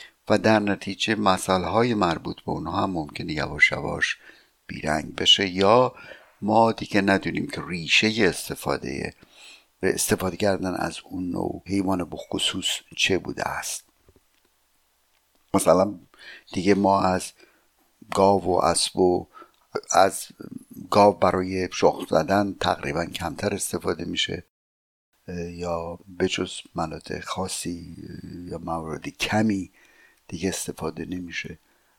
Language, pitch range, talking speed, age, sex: Persian, 85-105 Hz, 105 wpm, 60-79, male